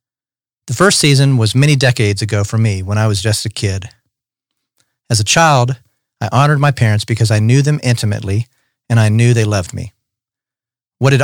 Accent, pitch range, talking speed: American, 110-135 Hz, 185 wpm